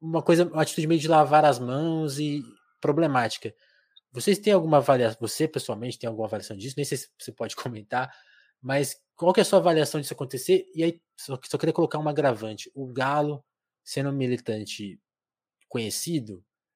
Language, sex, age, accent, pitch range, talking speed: Portuguese, male, 20-39, Brazilian, 125-155 Hz, 180 wpm